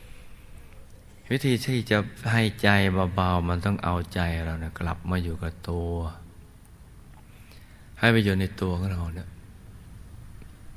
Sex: male